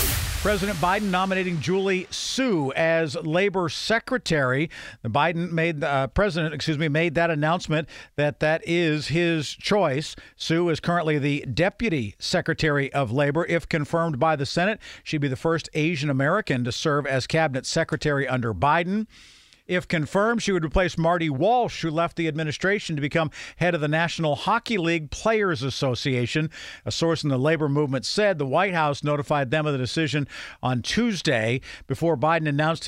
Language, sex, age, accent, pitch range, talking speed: English, male, 50-69, American, 145-175 Hz, 165 wpm